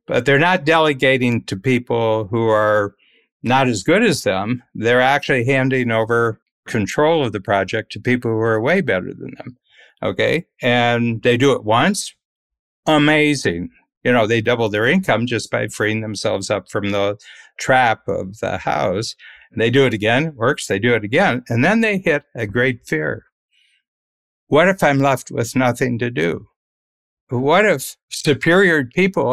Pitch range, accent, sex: 105-135 Hz, American, male